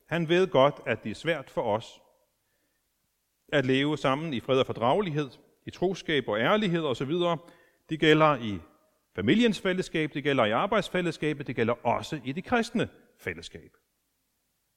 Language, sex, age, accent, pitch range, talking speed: Danish, male, 40-59, native, 125-175 Hz, 150 wpm